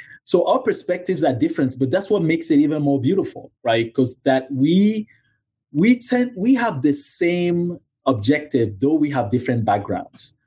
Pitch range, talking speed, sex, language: 120-160 Hz, 165 wpm, male, English